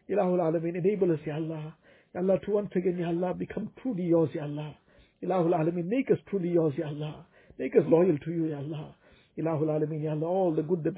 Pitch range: 155-180 Hz